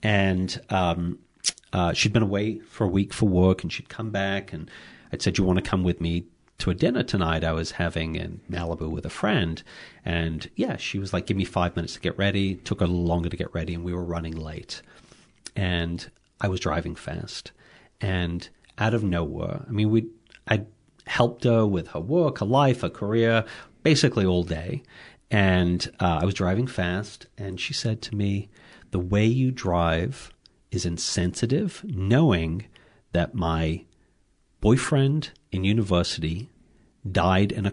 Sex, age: male, 40-59